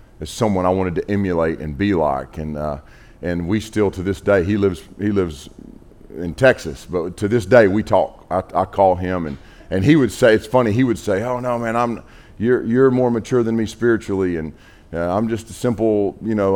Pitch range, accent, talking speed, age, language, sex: 90-110 Hz, American, 225 wpm, 40-59, English, male